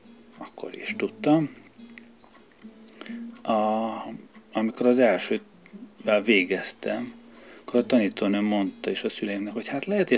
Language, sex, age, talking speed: Hungarian, male, 40-59, 110 wpm